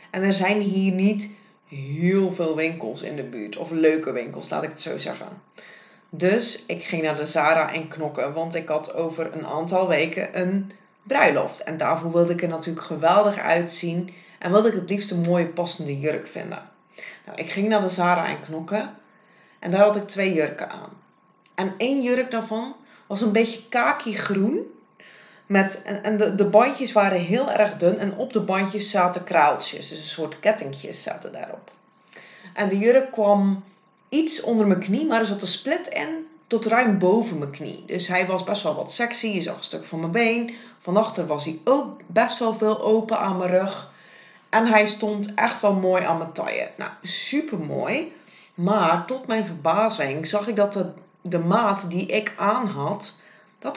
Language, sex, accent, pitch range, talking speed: English, female, Dutch, 170-215 Hz, 185 wpm